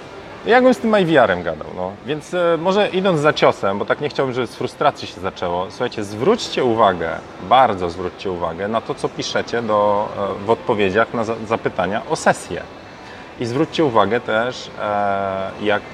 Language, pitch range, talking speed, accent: Polish, 110-135 Hz, 165 wpm, native